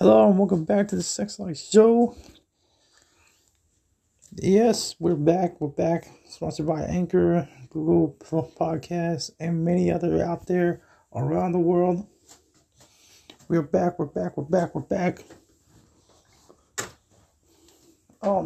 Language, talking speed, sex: English, 115 wpm, male